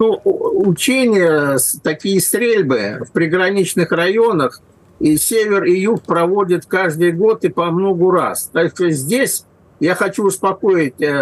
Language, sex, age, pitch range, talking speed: Russian, male, 50-69, 180-230 Hz, 130 wpm